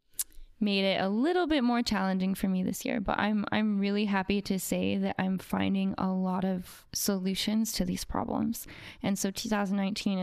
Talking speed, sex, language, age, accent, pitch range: 180 wpm, female, English, 20-39, American, 185-215 Hz